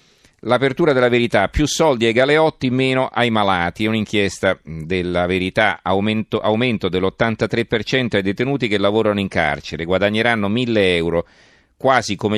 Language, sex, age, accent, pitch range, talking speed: Italian, male, 40-59, native, 90-110 Hz, 130 wpm